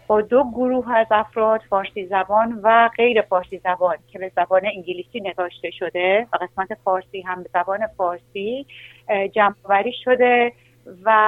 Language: Persian